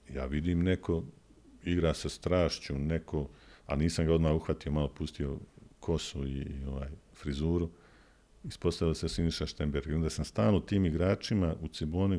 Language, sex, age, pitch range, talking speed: Croatian, male, 50-69, 75-90 Hz, 155 wpm